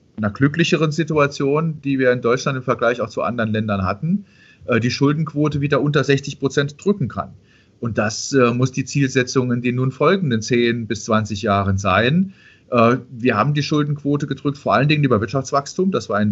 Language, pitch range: German, 105-135 Hz